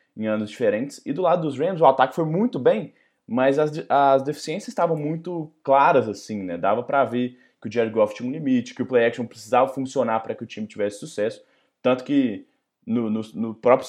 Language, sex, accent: Portuguese, male, Brazilian